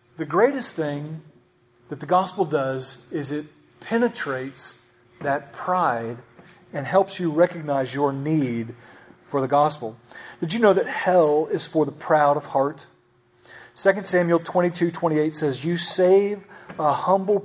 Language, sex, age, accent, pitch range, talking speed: English, male, 40-59, American, 140-180 Hz, 145 wpm